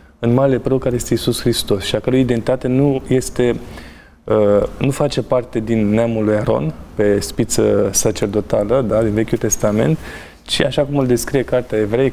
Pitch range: 110-135 Hz